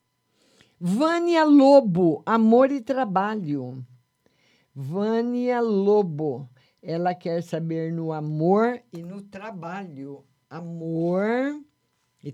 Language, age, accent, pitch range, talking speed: Portuguese, 50-69, Brazilian, 155-215 Hz, 85 wpm